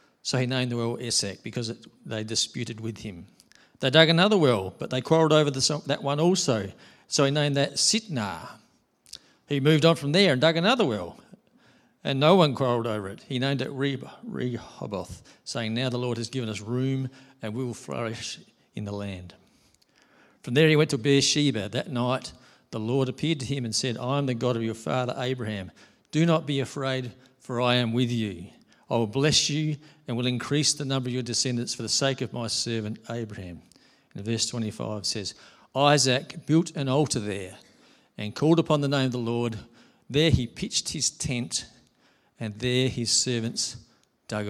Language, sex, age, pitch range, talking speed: English, male, 50-69, 115-145 Hz, 190 wpm